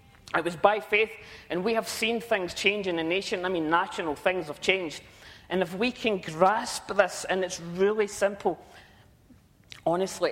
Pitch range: 185-240 Hz